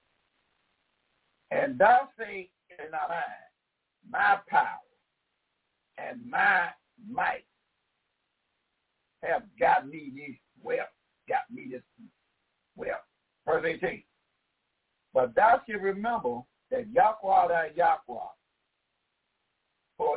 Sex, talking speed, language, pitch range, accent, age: male, 90 wpm, English, 190-260 Hz, American, 60-79